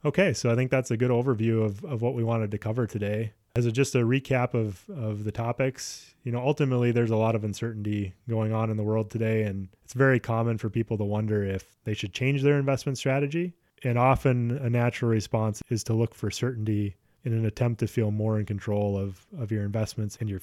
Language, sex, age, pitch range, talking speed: English, male, 20-39, 105-120 Hz, 230 wpm